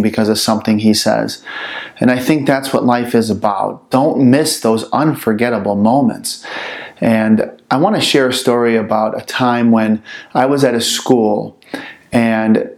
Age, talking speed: 30-49, 160 wpm